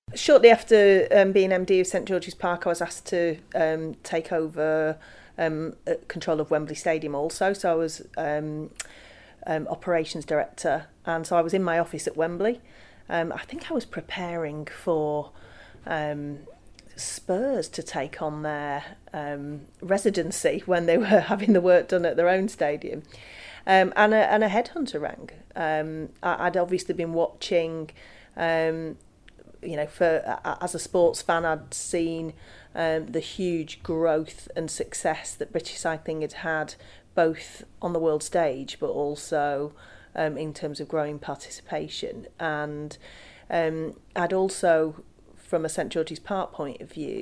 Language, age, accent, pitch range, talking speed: English, 30-49, British, 155-185 Hz, 155 wpm